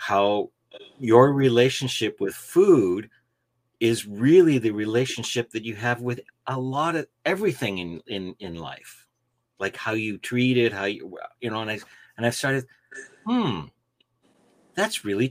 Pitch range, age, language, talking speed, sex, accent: 105-130 Hz, 50-69, English, 150 wpm, male, American